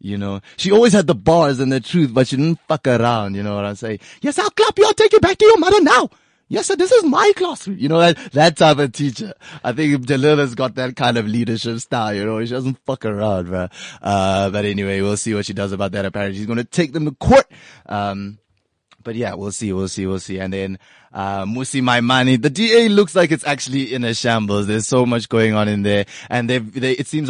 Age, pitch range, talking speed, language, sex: 20-39, 95-120 Hz, 255 wpm, English, male